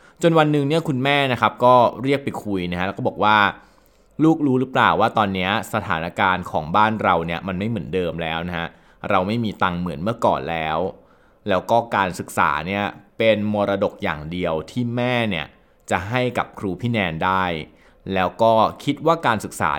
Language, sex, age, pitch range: Thai, male, 20-39, 95-125 Hz